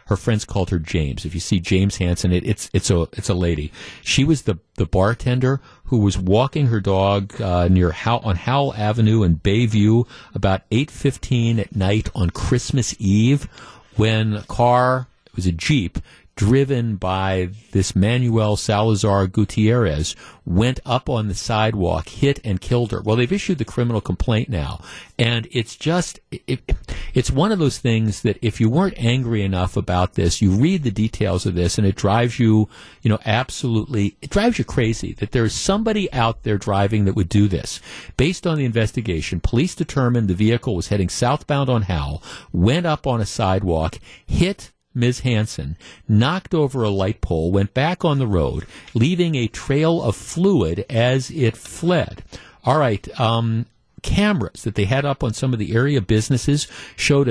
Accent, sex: American, male